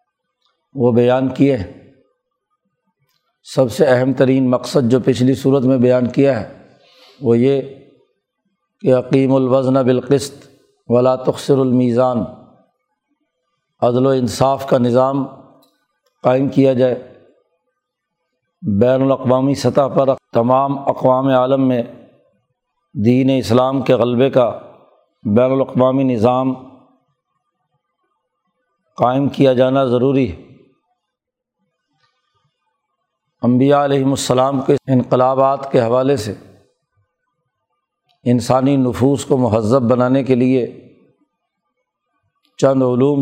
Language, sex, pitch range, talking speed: Urdu, male, 125-140 Hz, 95 wpm